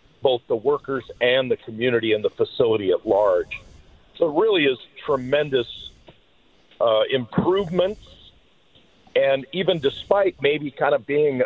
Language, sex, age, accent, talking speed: English, male, 50-69, American, 130 wpm